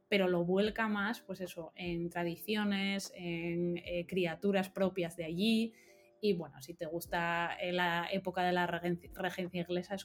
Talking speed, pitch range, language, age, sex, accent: 165 wpm, 175-205 Hz, Spanish, 20-39, female, Spanish